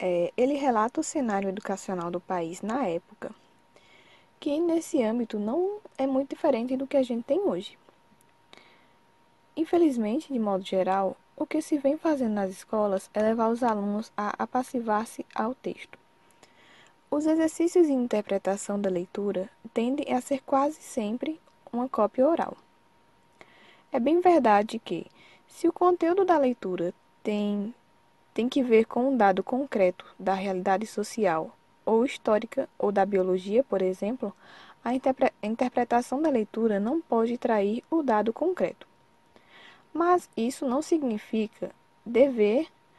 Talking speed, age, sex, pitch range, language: 135 wpm, 10-29, female, 205-280 Hz, Portuguese